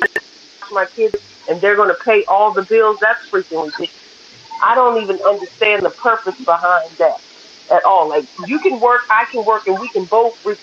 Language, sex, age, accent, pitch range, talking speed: English, female, 40-59, American, 200-300 Hz, 190 wpm